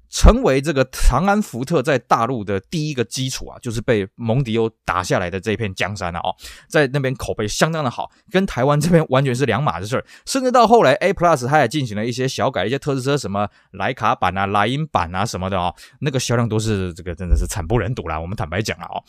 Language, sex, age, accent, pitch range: Chinese, male, 20-39, native, 105-155 Hz